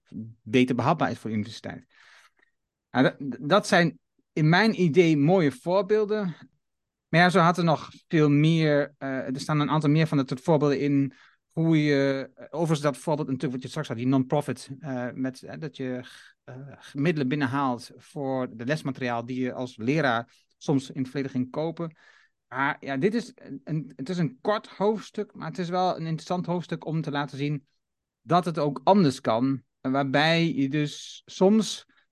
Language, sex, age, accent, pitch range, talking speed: Dutch, male, 30-49, Dutch, 130-165 Hz, 180 wpm